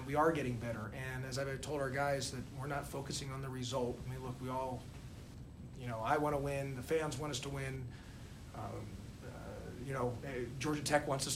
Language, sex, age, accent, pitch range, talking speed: English, male, 40-59, American, 130-155 Hz, 220 wpm